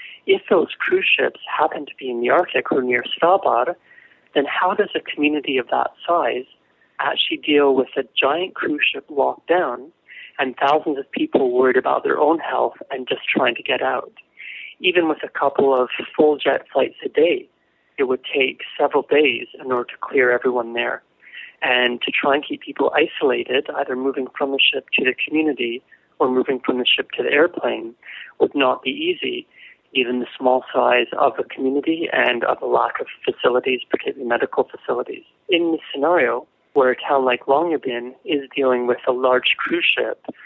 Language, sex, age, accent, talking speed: English, male, 40-59, American, 185 wpm